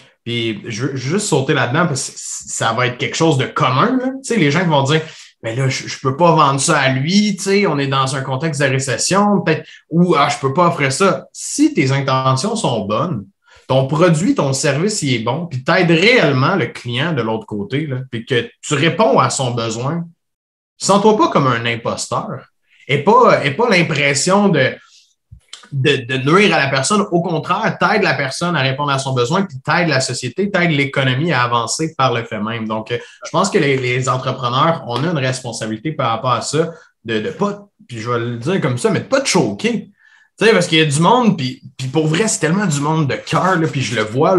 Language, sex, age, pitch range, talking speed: French, male, 30-49, 130-175 Hz, 230 wpm